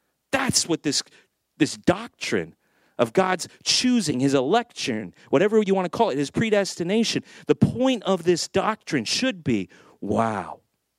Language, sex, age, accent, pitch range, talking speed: English, male, 40-59, American, 115-165 Hz, 140 wpm